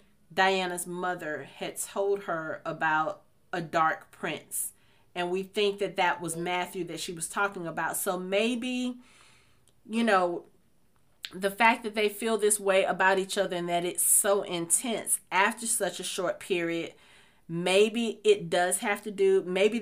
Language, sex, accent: English, female, American